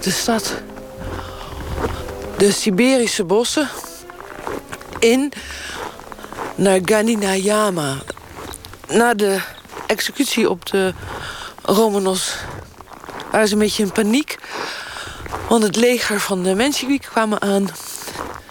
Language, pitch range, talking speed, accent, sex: Dutch, 190-230 Hz, 90 wpm, Dutch, female